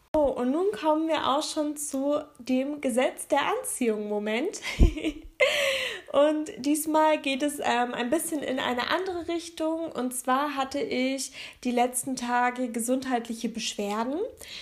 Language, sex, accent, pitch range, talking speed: German, female, German, 245-300 Hz, 135 wpm